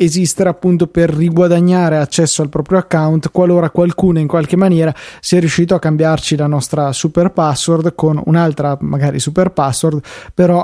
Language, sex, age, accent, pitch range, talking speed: Italian, male, 20-39, native, 150-170 Hz, 150 wpm